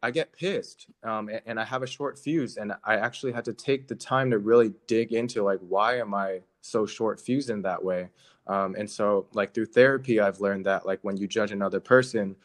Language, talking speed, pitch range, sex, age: English, 230 wpm, 95-120 Hz, male, 20-39